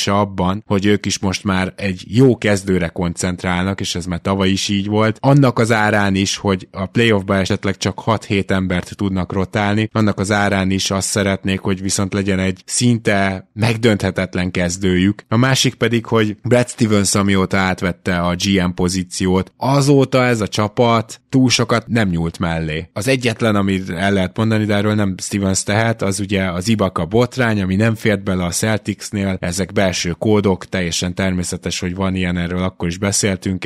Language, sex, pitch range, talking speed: Hungarian, male, 95-110 Hz, 175 wpm